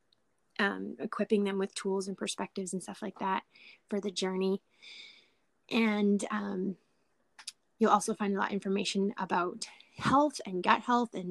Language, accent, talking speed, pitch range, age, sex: English, American, 155 wpm, 190-220 Hz, 20-39, female